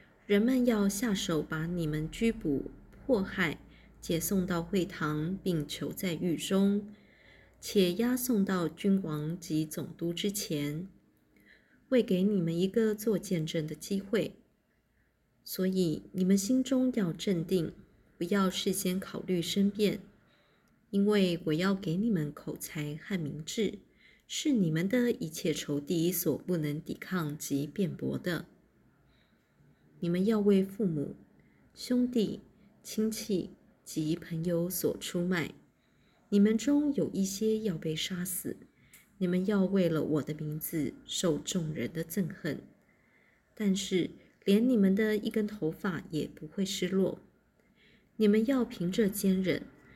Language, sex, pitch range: Chinese, female, 165-210 Hz